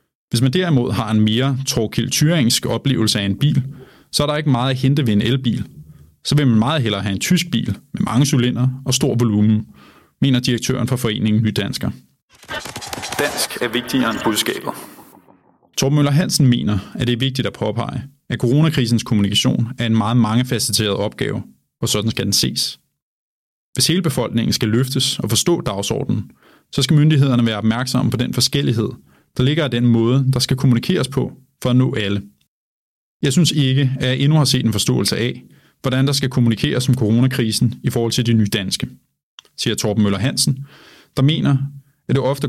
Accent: native